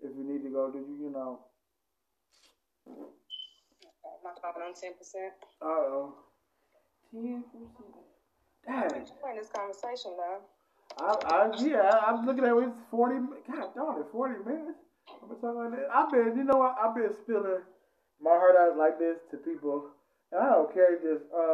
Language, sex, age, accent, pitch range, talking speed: English, male, 20-39, American, 150-235 Hz, 165 wpm